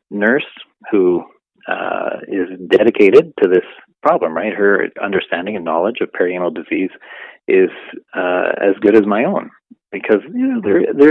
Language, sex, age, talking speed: English, male, 40-59, 130 wpm